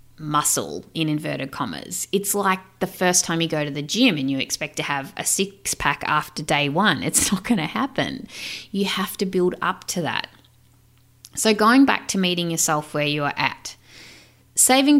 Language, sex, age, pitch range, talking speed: English, female, 30-49, 150-215 Hz, 190 wpm